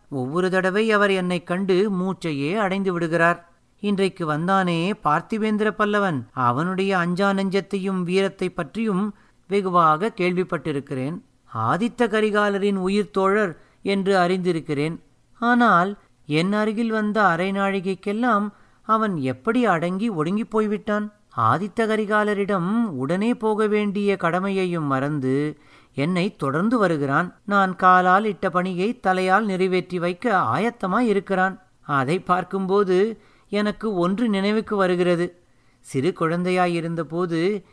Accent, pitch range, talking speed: native, 170-210 Hz, 95 wpm